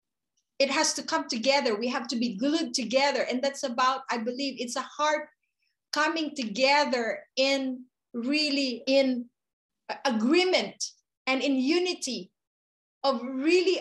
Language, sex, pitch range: English, female, 255-310 Hz